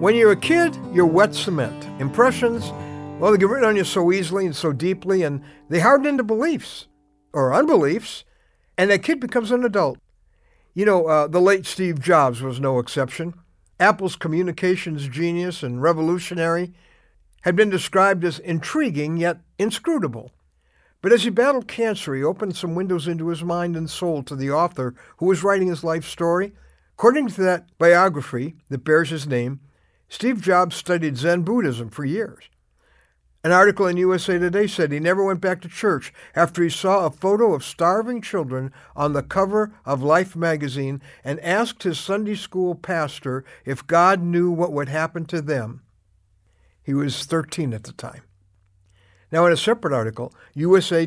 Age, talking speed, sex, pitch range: 60-79, 170 wpm, male, 140-190 Hz